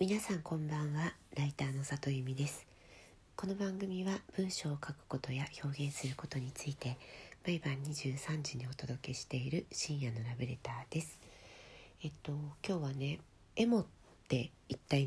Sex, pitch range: female, 135-155 Hz